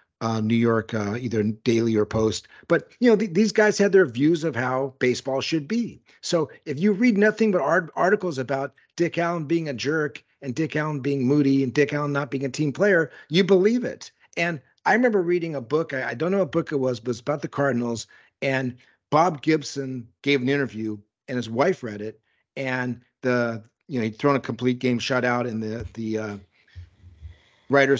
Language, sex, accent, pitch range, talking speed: English, male, American, 120-165 Hz, 210 wpm